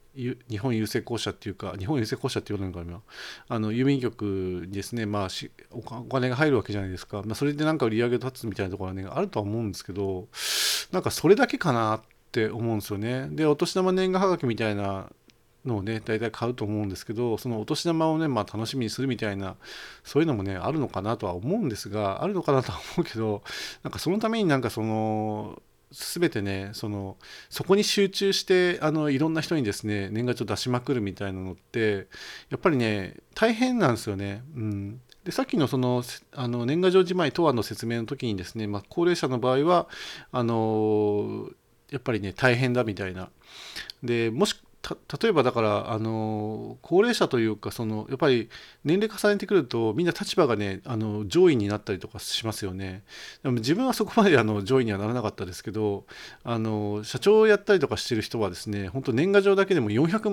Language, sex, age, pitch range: Japanese, male, 40-59, 105-155 Hz